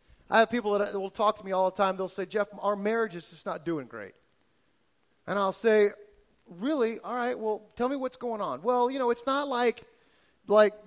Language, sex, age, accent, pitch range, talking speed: English, male, 30-49, American, 205-245 Hz, 220 wpm